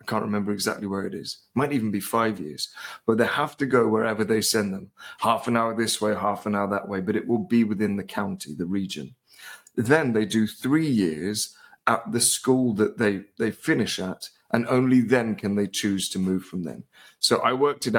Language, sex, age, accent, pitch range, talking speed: English, male, 30-49, British, 100-125 Hz, 220 wpm